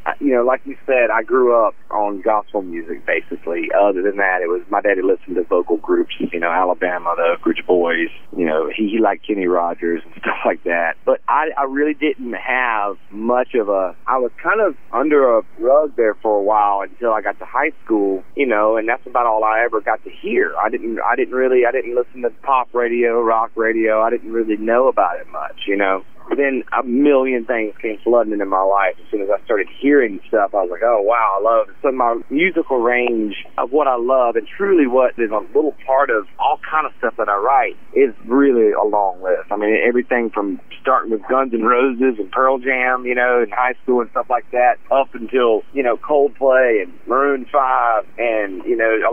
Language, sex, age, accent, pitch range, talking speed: English, male, 30-49, American, 110-140 Hz, 225 wpm